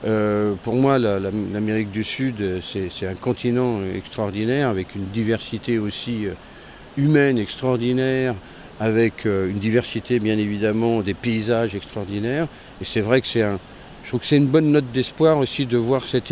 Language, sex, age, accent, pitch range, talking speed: French, male, 50-69, French, 105-145 Hz, 160 wpm